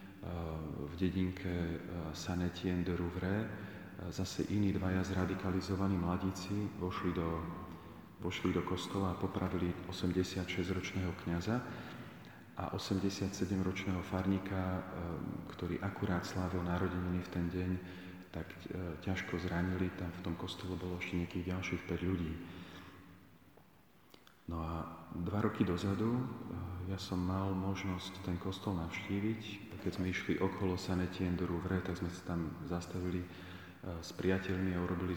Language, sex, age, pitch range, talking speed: Slovak, male, 40-59, 90-95 Hz, 115 wpm